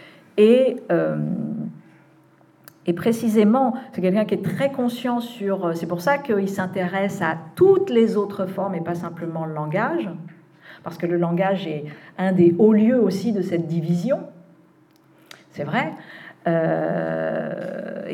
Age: 50-69